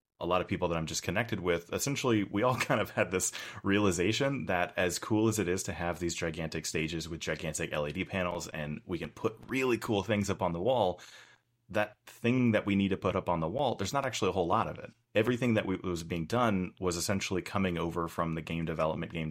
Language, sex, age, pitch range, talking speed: English, male, 30-49, 80-105 Hz, 235 wpm